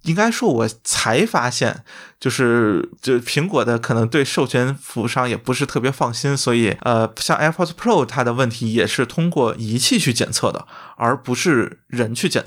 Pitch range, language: 115-155 Hz, Chinese